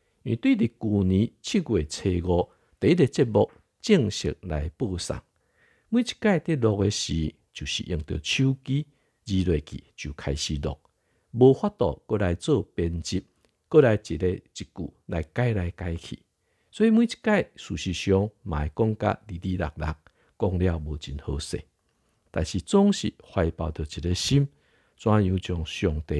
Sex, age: male, 50-69